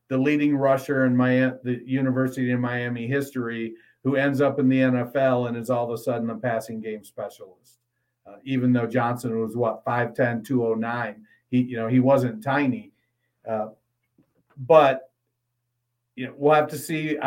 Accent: American